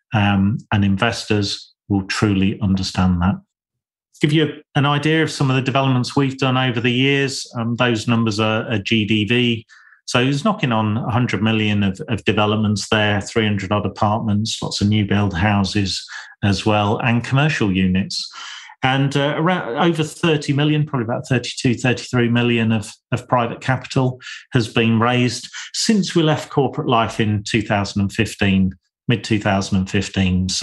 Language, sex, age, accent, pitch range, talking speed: English, male, 40-59, British, 100-125 Hz, 155 wpm